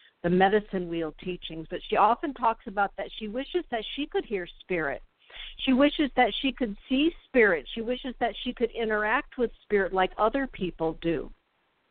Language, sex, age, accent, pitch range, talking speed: English, female, 50-69, American, 180-225 Hz, 180 wpm